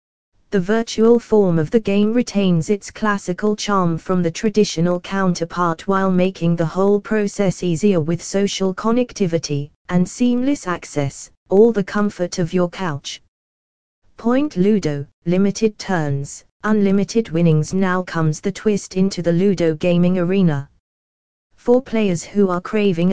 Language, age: English, 20-39